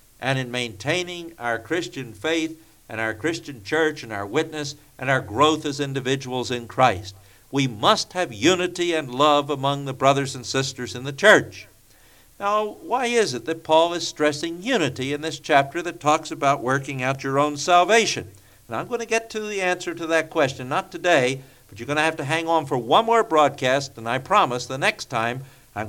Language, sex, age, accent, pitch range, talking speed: English, male, 60-79, American, 125-165 Hz, 200 wpm